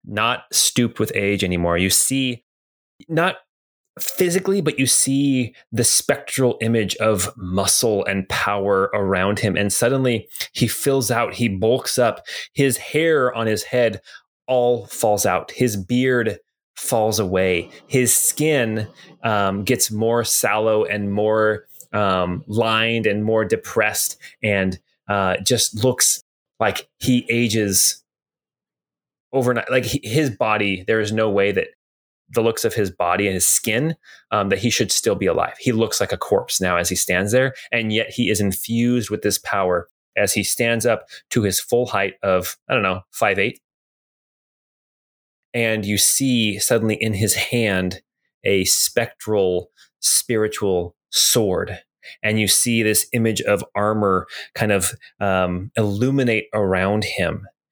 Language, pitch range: English, 100-120 Hz